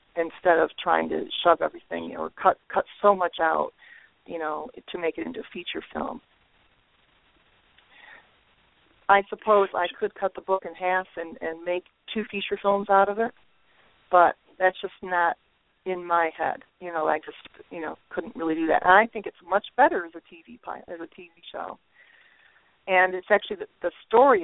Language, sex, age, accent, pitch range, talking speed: English, female, 40-59, American, 170-220 Hz, 190 wpm